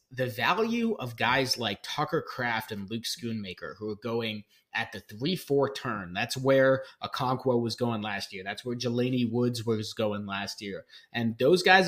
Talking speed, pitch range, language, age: 175 wpm, 110-140 Hz, English, 30-49